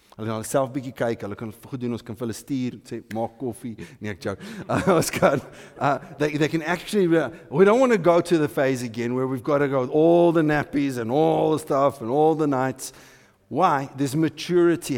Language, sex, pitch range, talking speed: English, male, 115-150 Hz, 140 wpm